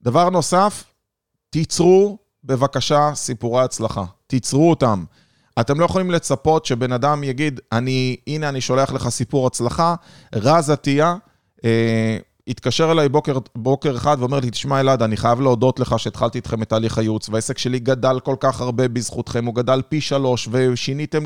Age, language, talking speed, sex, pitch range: 30-49, Hebrew, 155 wpm, male, 125-160 Hz